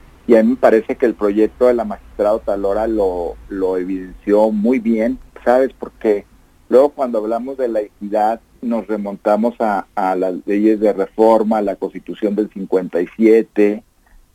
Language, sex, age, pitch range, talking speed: English, male, 50-69, 105-125 Hz, 160 wpm